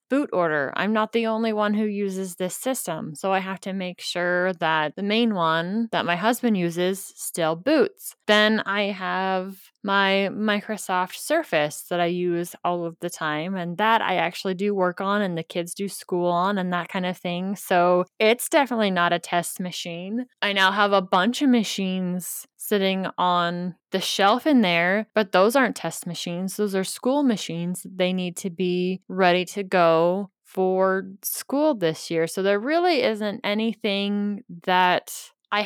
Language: English